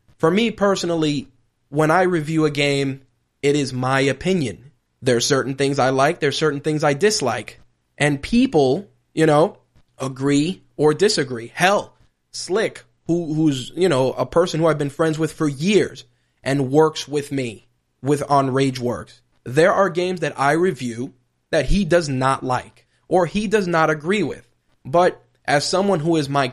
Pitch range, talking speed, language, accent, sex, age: 130-155 Hz, 170 wpm, English, American, male, 20-39